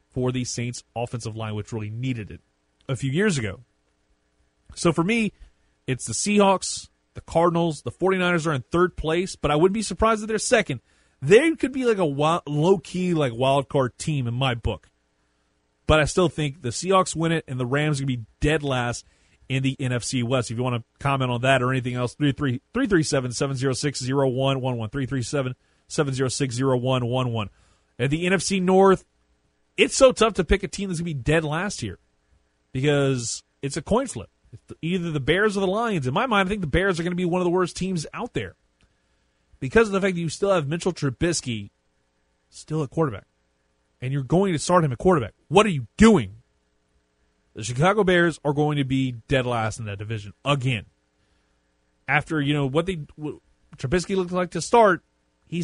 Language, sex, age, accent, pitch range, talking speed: English, male, 30-49, American, 110-170 Hz, 200 wpm